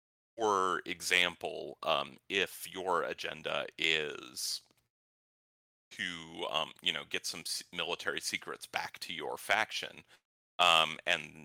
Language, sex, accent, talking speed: Danish, male, American, 110 wpm